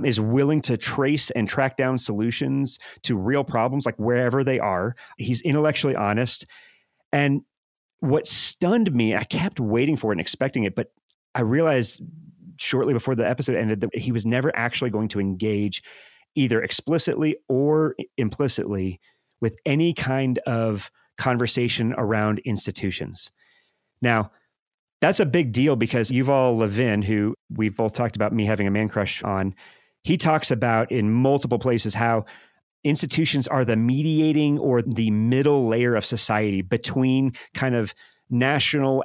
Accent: American